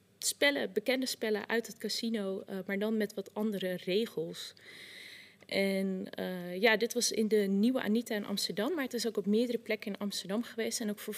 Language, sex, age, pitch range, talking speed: Dutch, female, 20-39, 195-235 Hz, 200 wpm